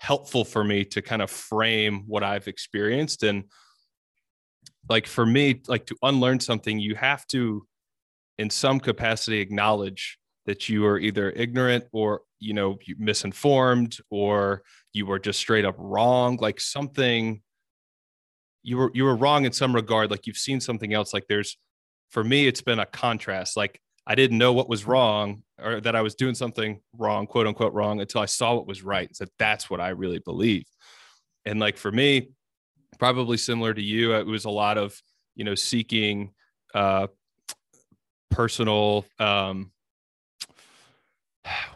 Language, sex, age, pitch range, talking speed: English, male, 20-39, 105-125 Hz, 160 wpm